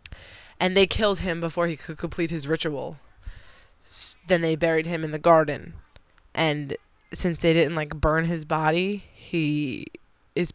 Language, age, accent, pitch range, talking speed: English, 20-39, American, 145-175 Hz, 155 wpm